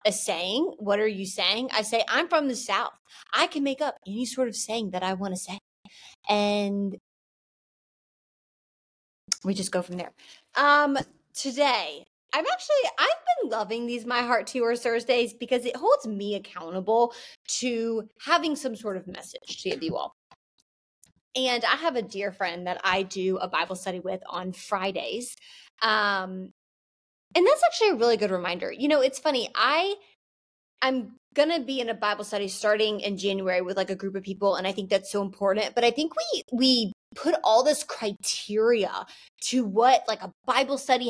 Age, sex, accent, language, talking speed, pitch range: 20-39, female, American, English, 180 wpm, 200-260 Hz